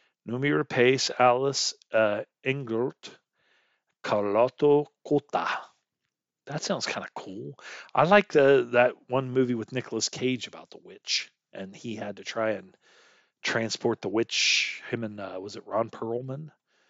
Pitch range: 110-145 Hz